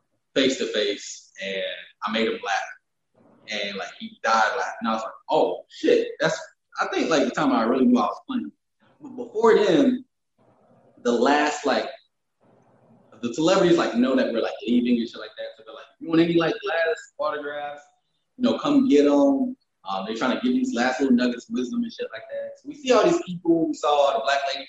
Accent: American